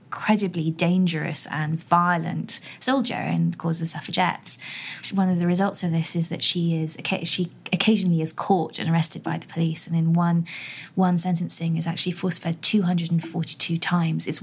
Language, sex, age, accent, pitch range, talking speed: English, female, 20-39, British, 165-185 Hz, 175 wpm